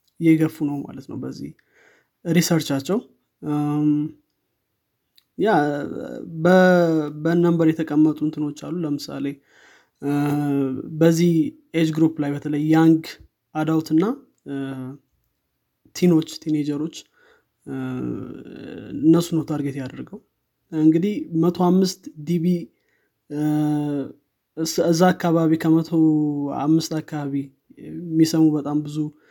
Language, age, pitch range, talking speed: Amharic, 20-39, 145-165 Hz, 70 wpm